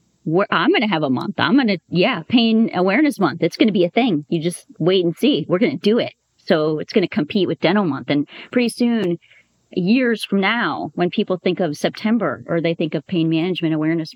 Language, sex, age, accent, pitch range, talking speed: English, female, 30-49, American, 160-210 Hz, 210 wpm